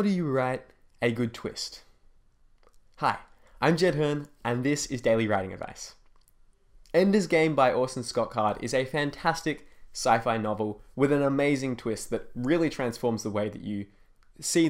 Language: English